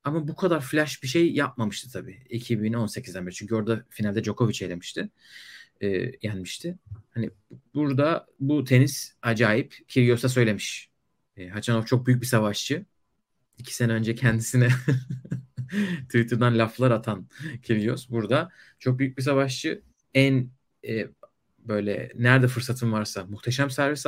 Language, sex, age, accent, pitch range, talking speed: Turkish, male, 30-49, native, 110-135 Hz, 125 wpm